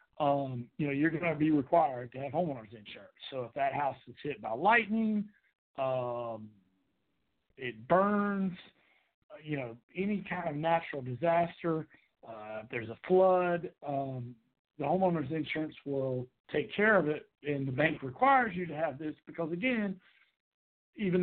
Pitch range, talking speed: 135-185 Hz, 155 wpm